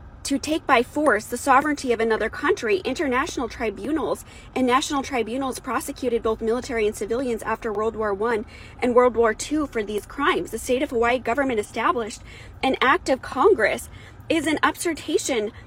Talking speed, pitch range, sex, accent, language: 165 wpm, 210-260 Hz, female, American, English